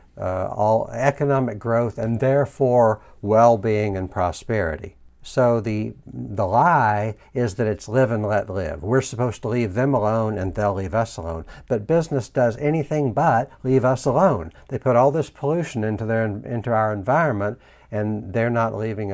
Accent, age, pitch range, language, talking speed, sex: American, 60-79, 95-125 Hz, English, 165 wpm, male